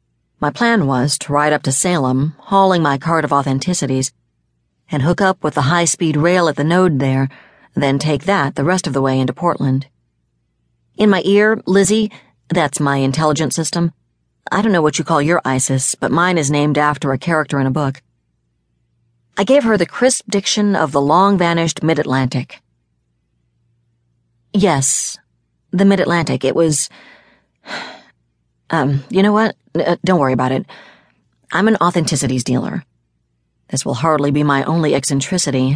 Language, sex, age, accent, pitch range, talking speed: English, female, 40-59, American, 120-175 Hz, 160 wpm